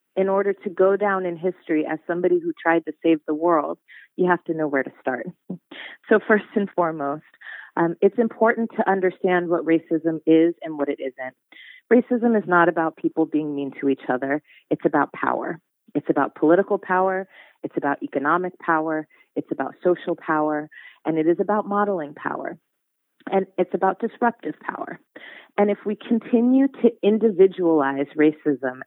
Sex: female